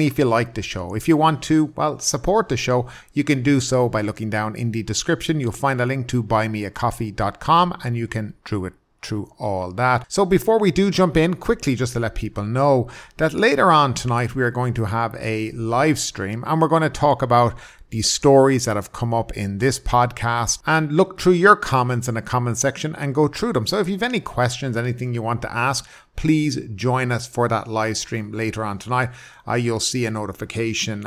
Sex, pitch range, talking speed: male, 110-150 Hz, 220 wpm